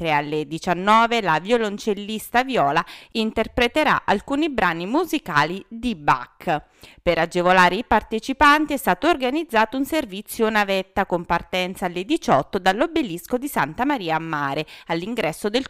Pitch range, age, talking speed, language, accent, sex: 175-270 Hz, 30-49, 125 wpm, Italian, native, female